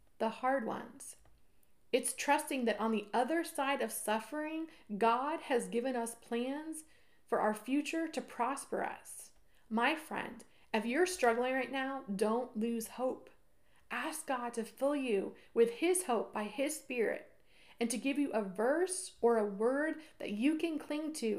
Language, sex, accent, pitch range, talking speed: English, female, American, 215-275 Hz, 165 wpm